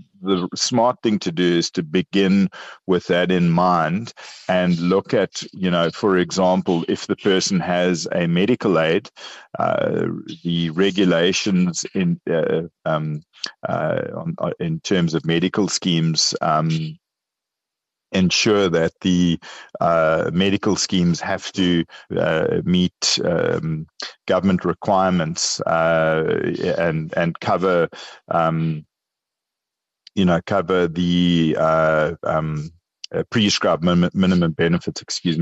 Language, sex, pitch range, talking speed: English, male, 80-95 Hz, 115 wpm